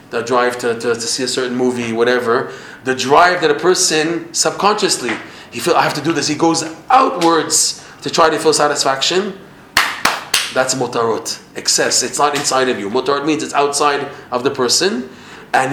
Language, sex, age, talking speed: English, male, 30-49, 180 wpm